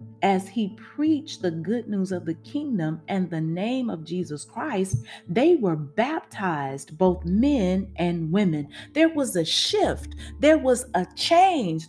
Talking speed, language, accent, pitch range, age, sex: 150 wpm, English, American, 175-275 Hz, 30-49, female